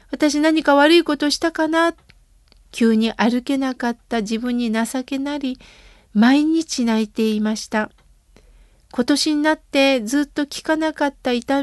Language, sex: Japanese, female